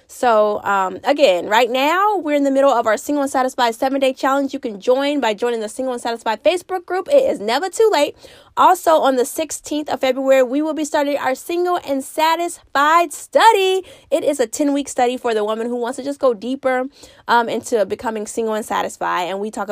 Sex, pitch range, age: female, 220-290 Hz, 20-39